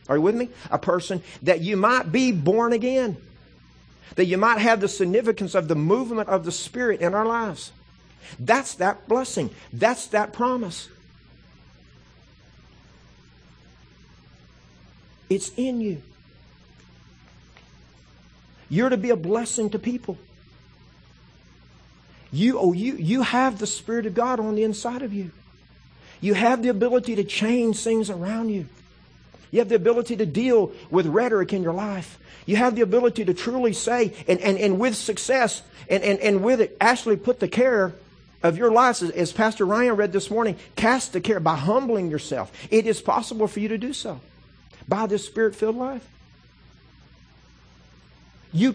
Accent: American